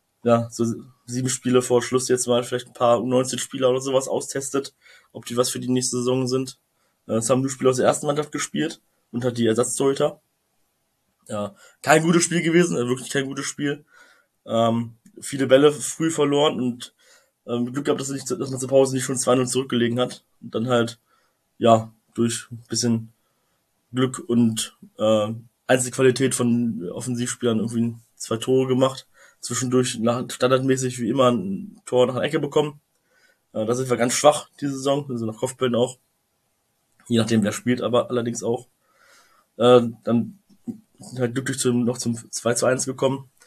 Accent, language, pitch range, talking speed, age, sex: German, German, 120-135 Hz, 170 wpm, 20-39, male